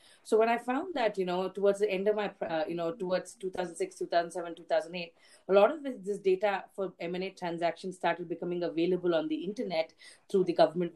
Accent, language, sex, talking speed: Indian, English, female, 205 wpm